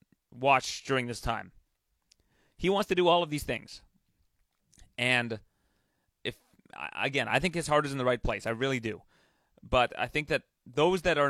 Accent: American